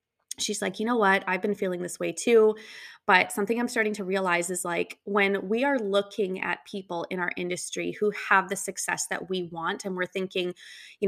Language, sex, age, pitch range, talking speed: English, female, 20-39, 195-255 Hz, 210 wpm